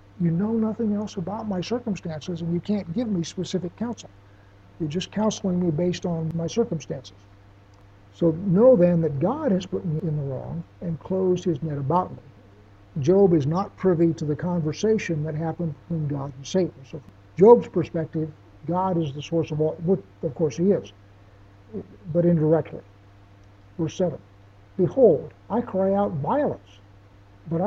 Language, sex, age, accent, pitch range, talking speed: English, male, 60-79, American, 130-195 Hz, 165 wpm